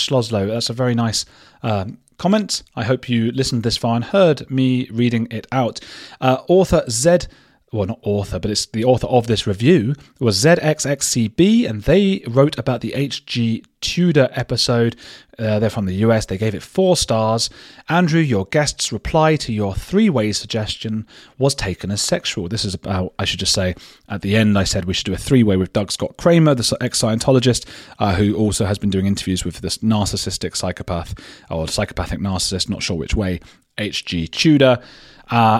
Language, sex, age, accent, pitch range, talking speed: English, male, 30-49, British, 105-150 Hz, 180 wpm